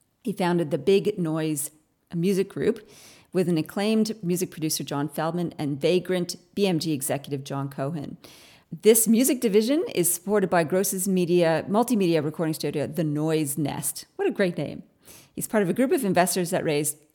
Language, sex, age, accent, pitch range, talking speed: English, female, 40-59, American, 155-195 Hz, 165 wpm